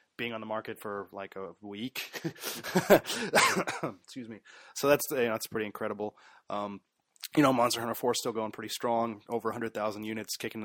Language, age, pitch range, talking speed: English, 20-39, 110-125 Hz, 185 wpm